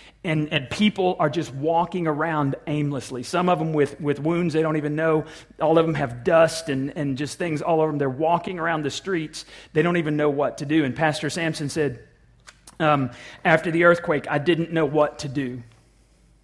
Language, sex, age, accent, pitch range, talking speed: English, male, 40-59, American, 140-160 Hz, 205 wpm